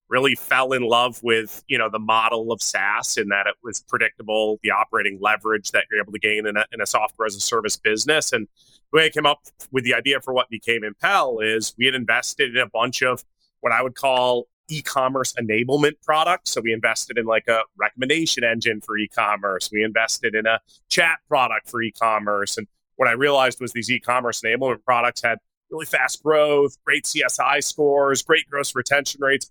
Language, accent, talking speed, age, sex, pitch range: English, American, 200 wpm, 30-49, male, 110-130 Hz